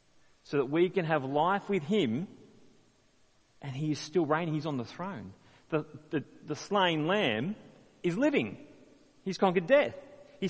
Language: English